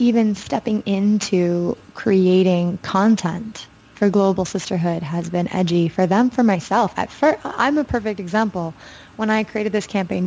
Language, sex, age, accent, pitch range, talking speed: English, female, 20-39, American, 180-215 Hz, 150 wpm